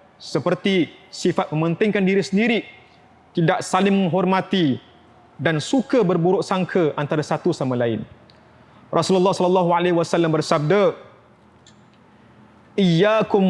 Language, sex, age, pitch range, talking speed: Malay, male, 30-49, 145-190 Hz, 100 wpm